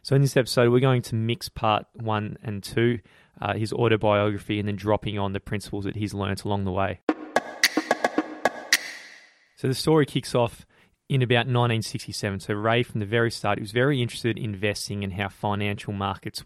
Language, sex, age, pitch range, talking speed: English, male, 20-39, 105-120 Hz, 185 wpm